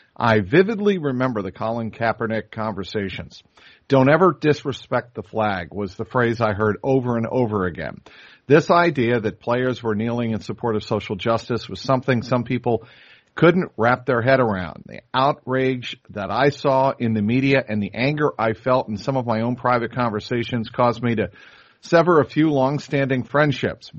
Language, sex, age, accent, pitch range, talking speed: English, male, 50-69, American, 110-140 Hz, 175 wpm